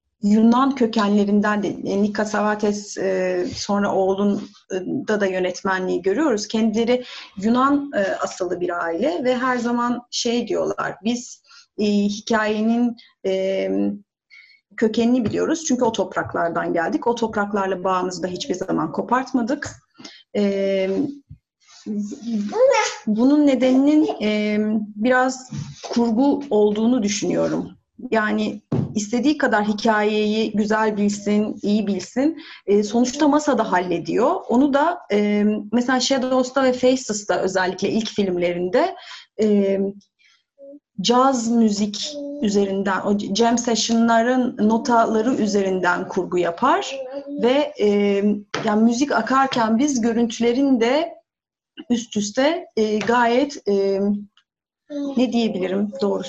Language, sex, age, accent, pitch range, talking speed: Turkish, female, 30-49, native, 205-255 Hz, 105 wpm